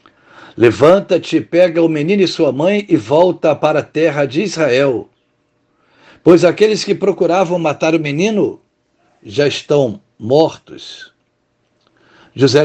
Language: Portuguese